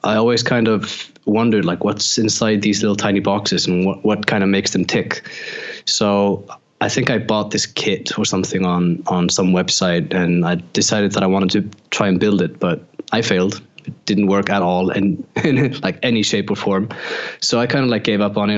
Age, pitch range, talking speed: 20-39, 95-110 Hz, 225 wpm